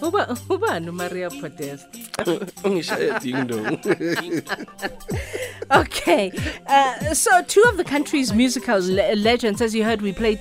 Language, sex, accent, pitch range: English, female, South African, 175-235 Hz